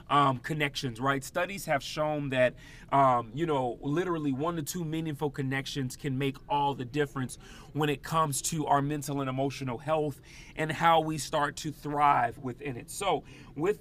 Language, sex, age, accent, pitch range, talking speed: English, male, 30-49, American, 140-170 Hz, 175 wpm